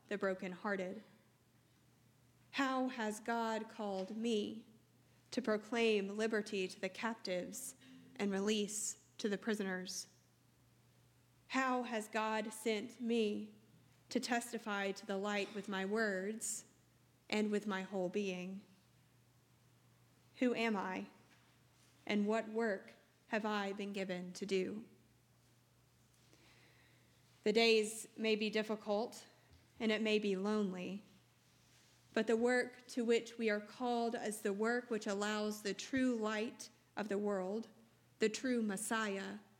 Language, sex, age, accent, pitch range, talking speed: English, female, 30-49, American, 185-220 Hz, 120 wpm